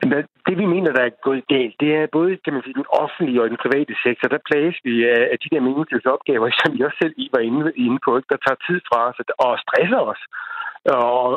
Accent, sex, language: native, male, Danish